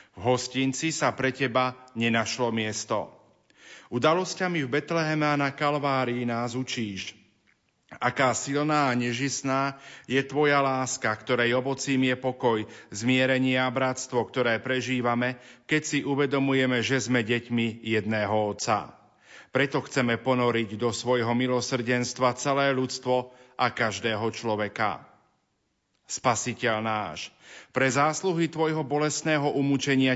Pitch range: 120-140 Hz